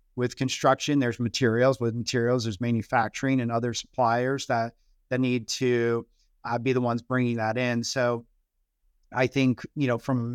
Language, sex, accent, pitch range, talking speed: English, male, American, 120-135 Hz, 160 wpm